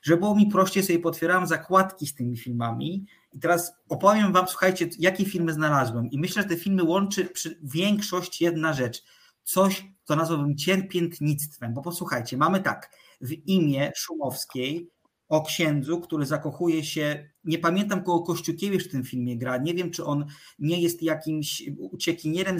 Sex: male